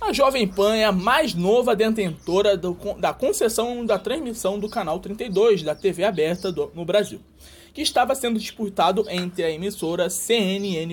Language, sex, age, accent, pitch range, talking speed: Portuguese, male, 20-39, Brazilian, 185-250 Hz, 165 wpm